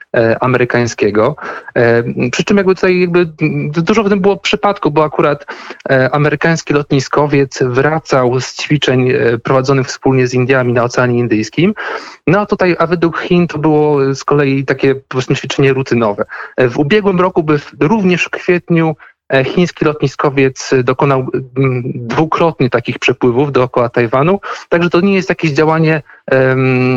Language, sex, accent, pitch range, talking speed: Polish, male, native, 130-160 Hz, 140 wpm